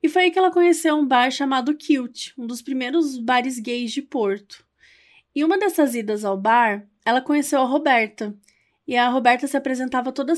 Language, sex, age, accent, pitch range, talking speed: Portuguese, female, 20-39, Brazilian, 220-290 Hz, 190 wpm